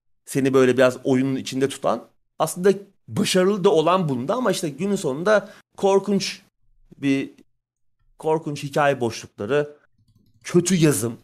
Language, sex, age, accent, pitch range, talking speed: Turkish, male, 30-49, native, 120-175 Hz, 115 wpm